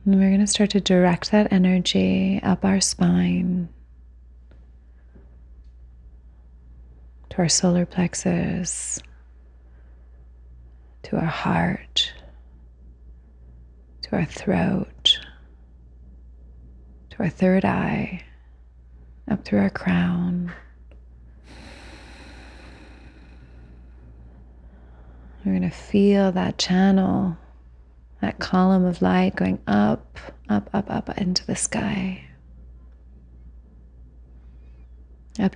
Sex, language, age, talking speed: female, English, 30-49, 85 wpm